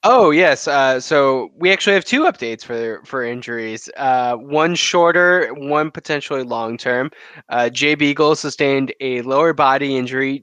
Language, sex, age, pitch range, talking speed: English, male, 20-39, 125-205 Hz, 160 wpm